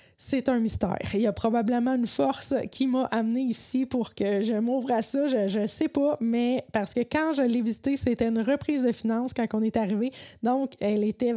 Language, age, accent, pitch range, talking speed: French, 20-39, Canadian, 215-250 Hz, 220 wpm